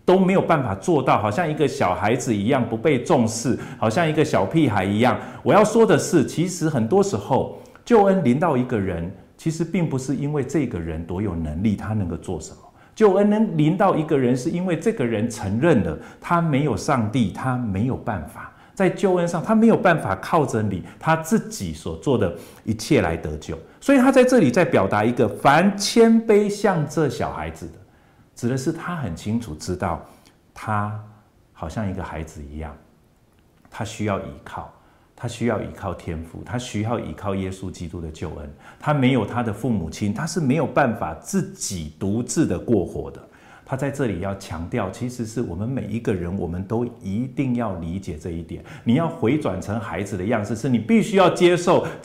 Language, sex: Chinese, male